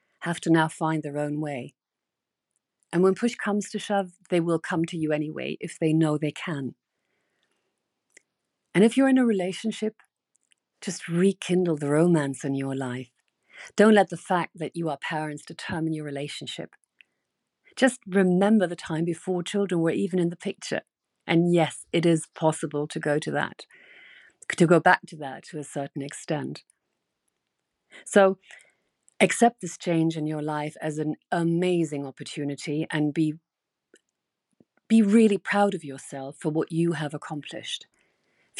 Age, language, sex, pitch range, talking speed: 50-69, English, female, 150-185 Hz, 155 wpm